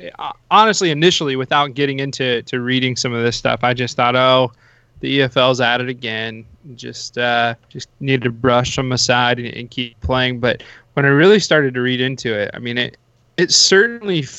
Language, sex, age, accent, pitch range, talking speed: English, male, 20-39, American, 120-155 Hz, 190 wpm